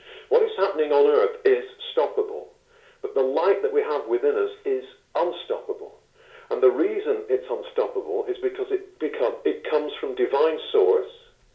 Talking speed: 160 wpm